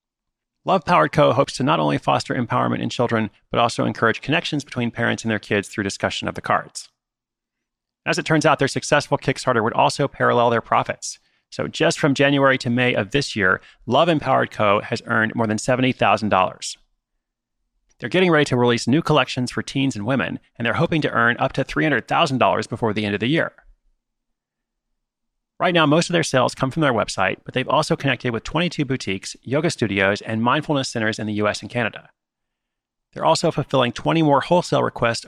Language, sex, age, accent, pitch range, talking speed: English, male, 30-49, American, 110-145 Hz, 190 wpm